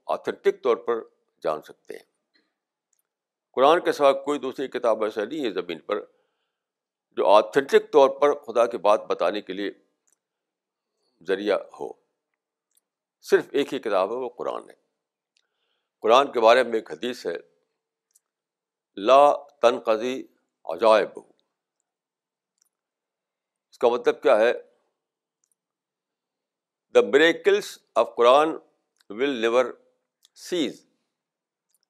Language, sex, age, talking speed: Urdu, male, 60-79, 110 wpm